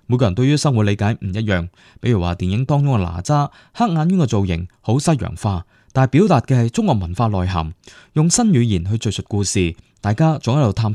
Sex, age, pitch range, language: male, 20-39, 100-155 Hz, Chinese